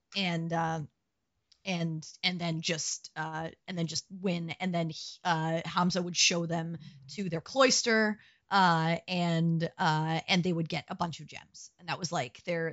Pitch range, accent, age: 160-190 Hz, American, 30-49